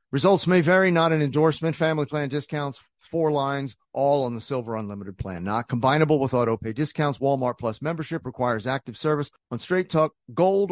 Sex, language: male, English